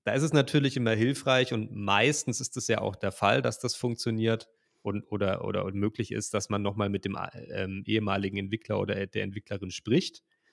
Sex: male